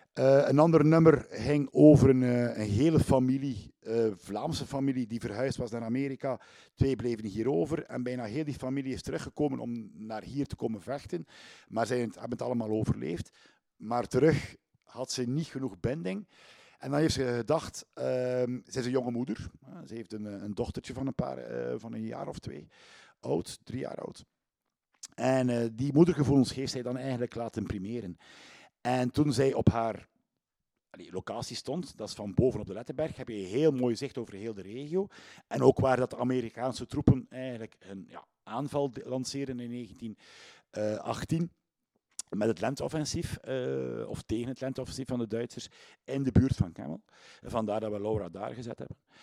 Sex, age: male, 50-69